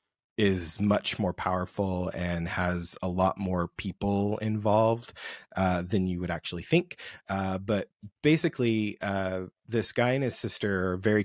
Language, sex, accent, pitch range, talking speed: English, male, American, 95-110 Hz, 150 wpm